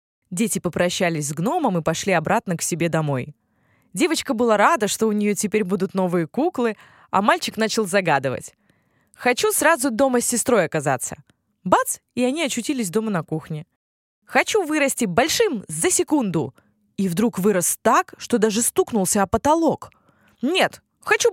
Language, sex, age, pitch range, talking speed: Russian, female, 20-39, 180-275 Hz, 150 wpm